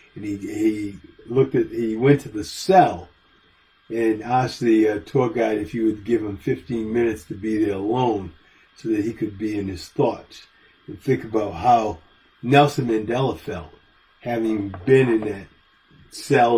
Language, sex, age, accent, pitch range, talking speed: English, male, 40-59, American, 100-135 Hz, 165 wpm